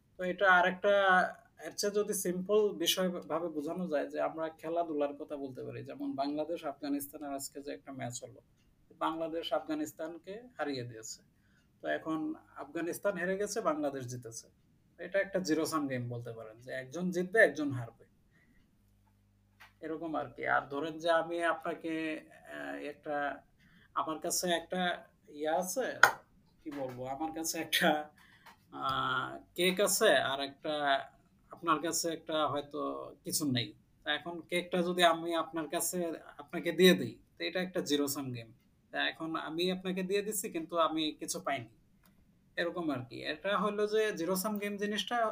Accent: native